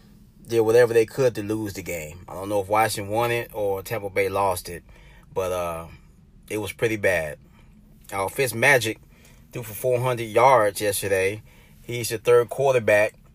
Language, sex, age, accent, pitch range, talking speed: English, male, 30-49, American, 95-130 Hz, 170 wpm